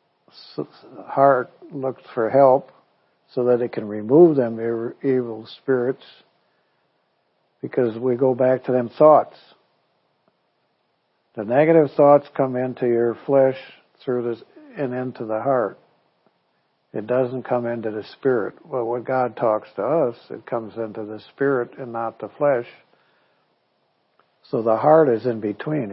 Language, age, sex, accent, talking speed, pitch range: English, 60-79, male, American, 135 wpm, 115-135 Hz